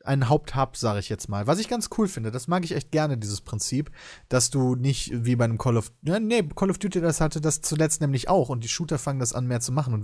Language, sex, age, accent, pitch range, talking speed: German, male, 30-49, German, 115-150 Hz, 280 wpm